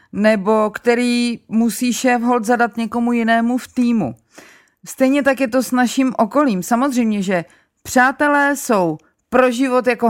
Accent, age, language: native, 30-49, Czech